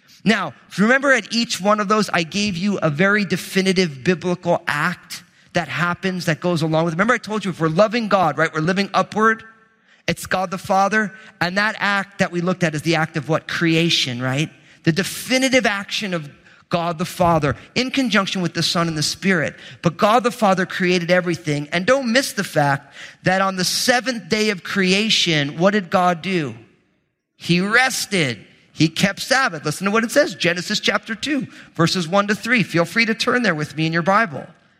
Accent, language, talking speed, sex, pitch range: American, English, 205 wpm, male, 165-215 Hz